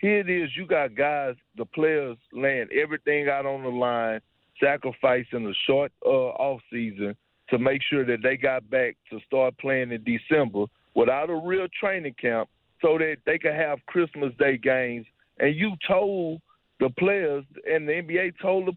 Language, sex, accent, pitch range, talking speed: English, male, American, 135-185 Hz, 175 wpm